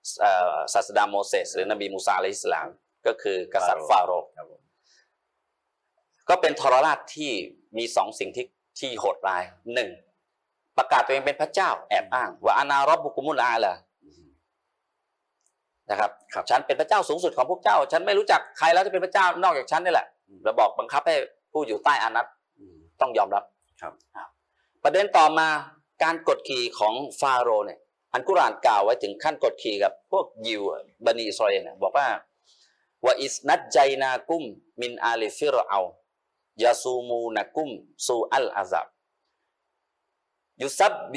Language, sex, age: Thai, male, 30-49